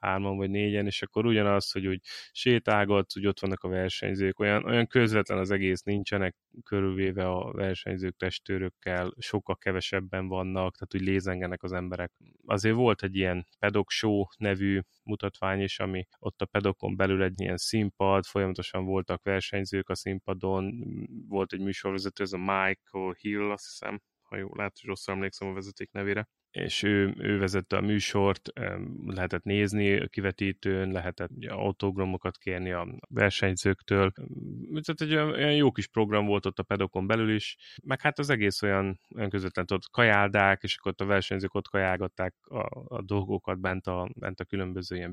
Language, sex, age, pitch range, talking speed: Hungarian, male, 20-39, 95-105 Hz, 160 wpm